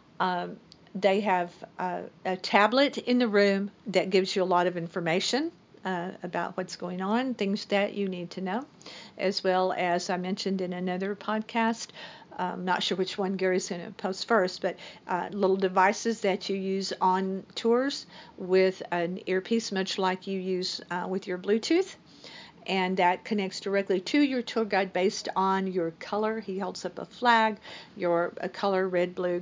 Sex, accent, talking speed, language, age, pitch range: female, American, 175 wpm, English, 50-69, 180-200 Hz